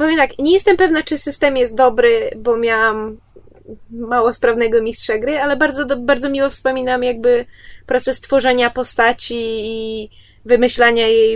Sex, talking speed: female, 150 wpm